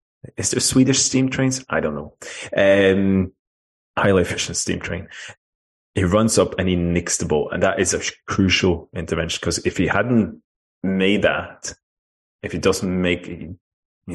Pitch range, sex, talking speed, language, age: 80-100 Hz, male, 165 wpm, English, 20-39